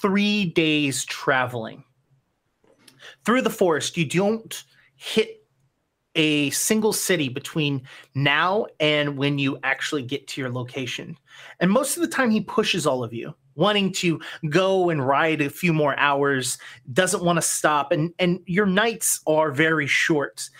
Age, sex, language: 30-49, male, English